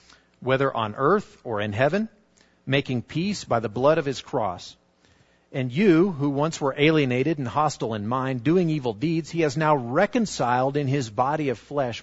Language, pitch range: English, 90-150 Hz